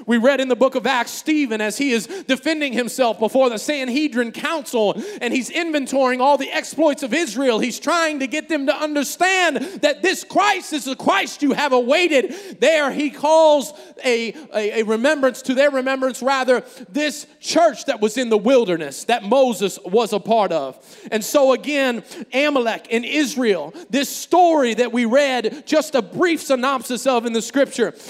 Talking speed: 180 wpm